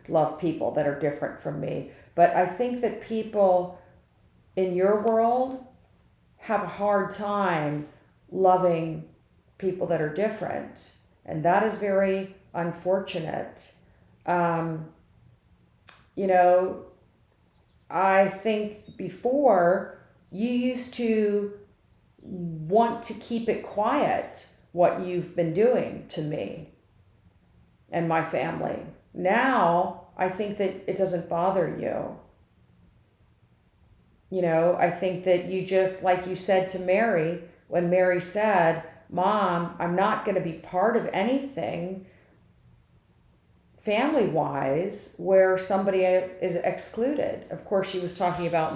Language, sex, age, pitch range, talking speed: English, female, 40-59, 175-210 Hz, 120 wpm